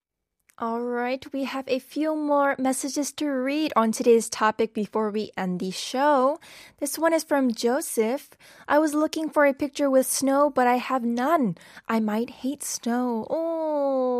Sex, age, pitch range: female, 10-29, 230-290 Hz